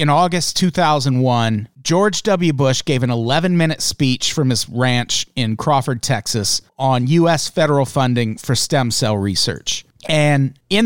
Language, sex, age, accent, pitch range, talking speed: English, male, 40-59, American, 125-165 Hz, 150 wpm